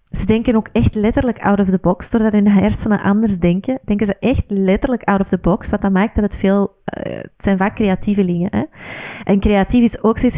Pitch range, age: 185-215 Hz, 30-49